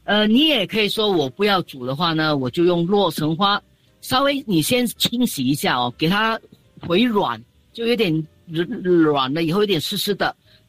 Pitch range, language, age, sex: 155-205 Hz, Chinese, 40-59, female